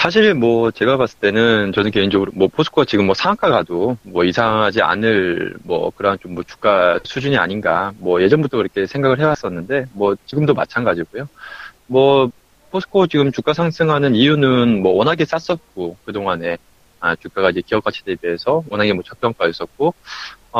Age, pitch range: 20-39, 100-150 Hz